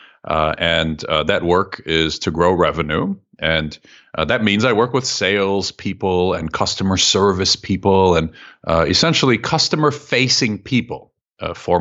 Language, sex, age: English, male, 50-69